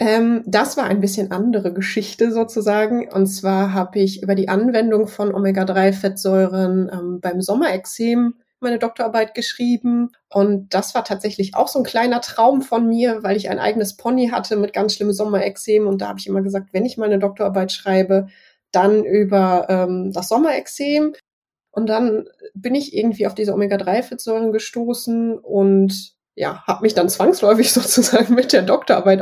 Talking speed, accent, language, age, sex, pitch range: 160 wpm, German, German, 20-39, female, 190-225 Hz